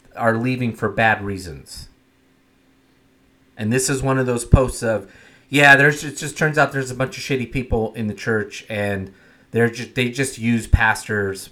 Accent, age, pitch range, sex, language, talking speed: American, 30-49, 110-135 Hz, male, English, 180 wpm